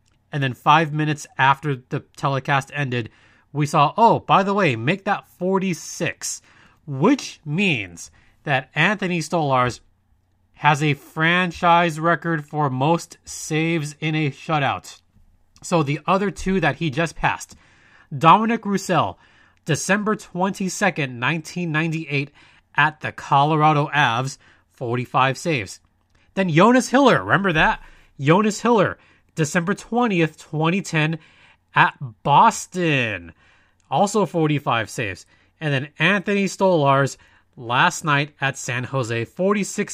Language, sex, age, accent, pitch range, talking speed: English, male, 30-49, American, 130-185 Hz, 115 wpm